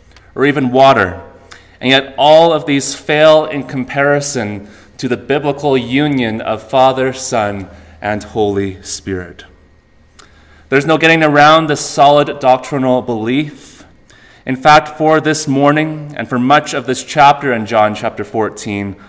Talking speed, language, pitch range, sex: 140 wpm, English, 105-140 Hz, male